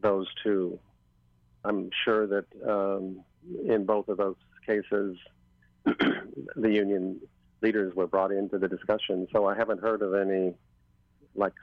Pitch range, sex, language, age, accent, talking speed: 90-100 Hz, male, English, 50-69, American, 135 wpm